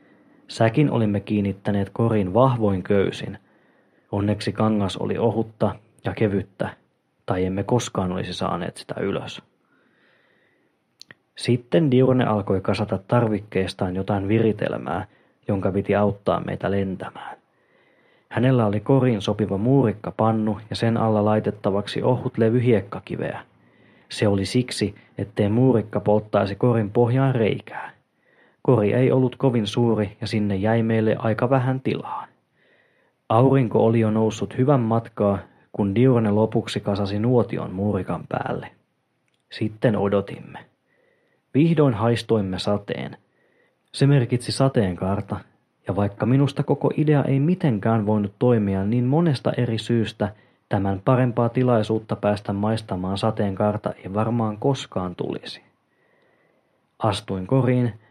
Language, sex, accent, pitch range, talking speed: Finnish, male, native, 100-125 Hz, 115 wpm